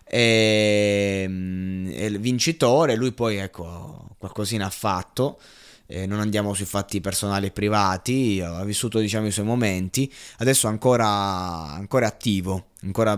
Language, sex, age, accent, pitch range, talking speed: Italian, male, 20-39, native, 100-125 Hz, 125 wpm